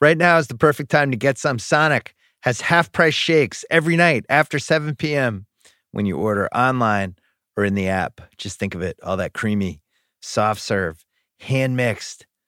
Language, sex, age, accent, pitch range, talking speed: English, male, 30-49, American, 100-145 Hz, 180 wpm